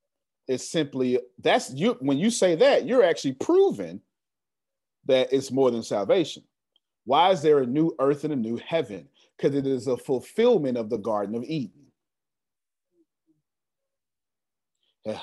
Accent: American